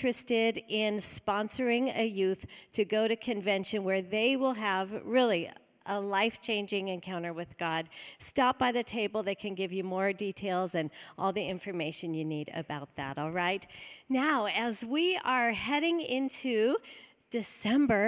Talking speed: 155 wpm